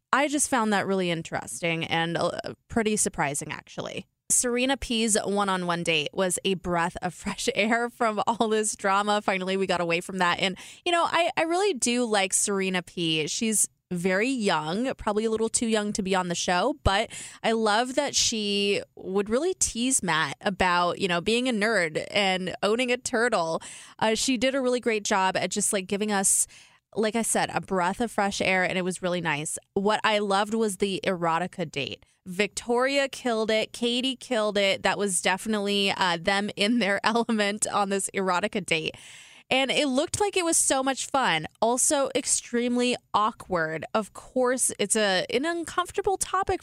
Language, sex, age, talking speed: English, female, 20-39, 180 wpm